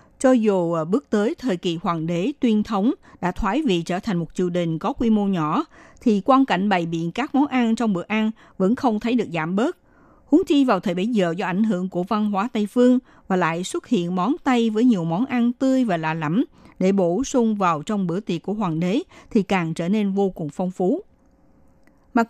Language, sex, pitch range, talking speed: Vietnamese, female, 185-245 Hz, 230 wpm